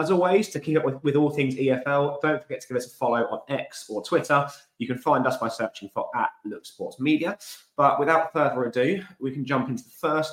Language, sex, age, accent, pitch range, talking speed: English, male, 20-39, British, 110-140 Hz, 245 wpm